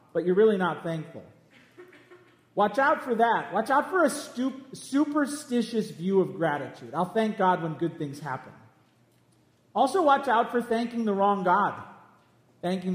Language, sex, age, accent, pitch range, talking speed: English, male, 40-59, American, 155-215 Hz, 155 wpm